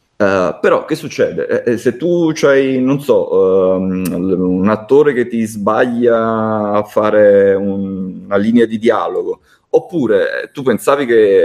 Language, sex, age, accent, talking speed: Italian, male, 30-49, native, 140 wpm